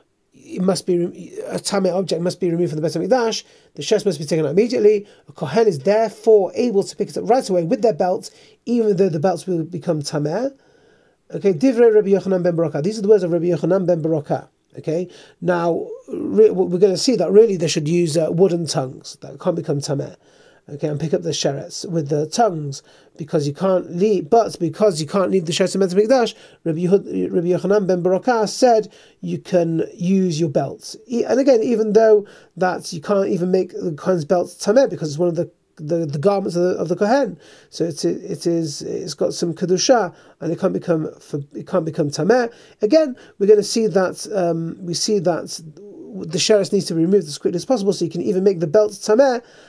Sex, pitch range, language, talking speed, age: male, 170-210 Hz, English, 215 wpm, 30-49